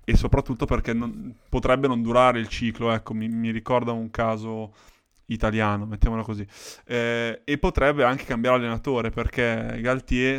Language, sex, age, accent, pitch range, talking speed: Italian, male, 20-39, native, 115-125 Hz, 150 wpm